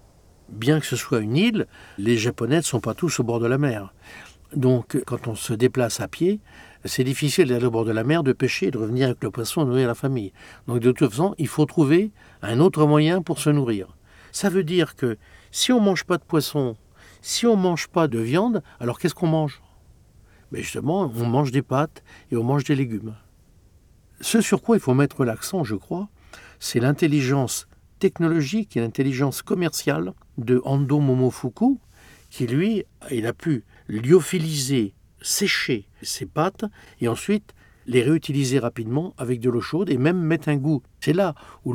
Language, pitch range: French, 115-160 Hz